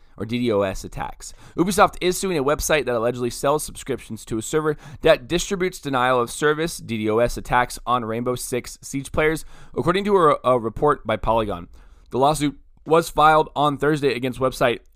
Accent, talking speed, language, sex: American, 155 wpm, English, male